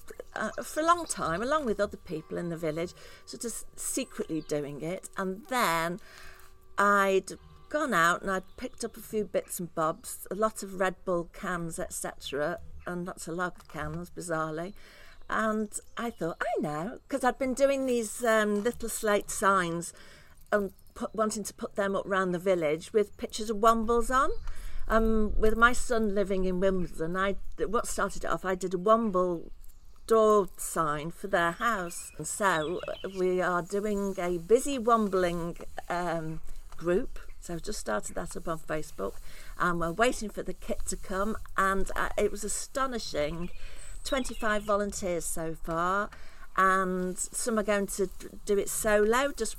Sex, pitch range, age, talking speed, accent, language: female, 175-220 Hz, 50-69, 165 wpm, British, English